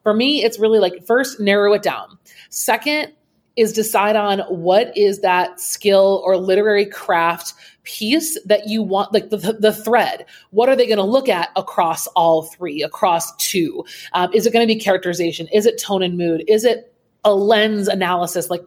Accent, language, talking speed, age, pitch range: American, English, 185 wpm, 30-49, 185-230 Hz